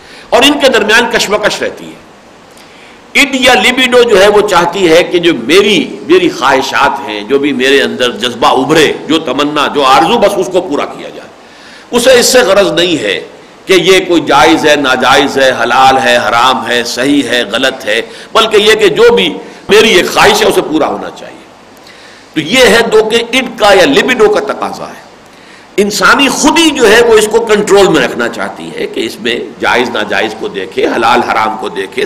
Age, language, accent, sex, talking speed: 60-79, English, Indian, male, 185 wpm